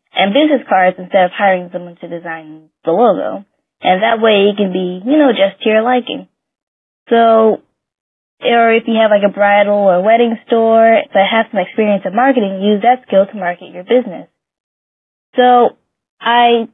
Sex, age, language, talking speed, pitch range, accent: female, 10-29, English, 180 wpm, 190-230 Hz, American